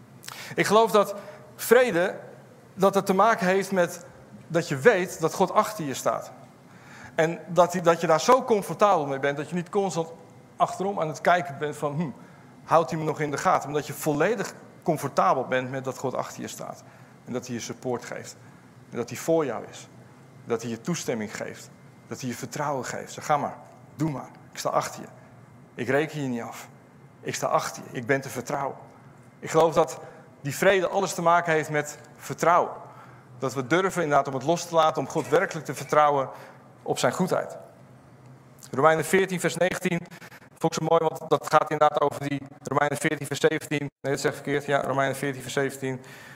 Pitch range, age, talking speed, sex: 130-165 Hz, 40-59, 200 wpm, male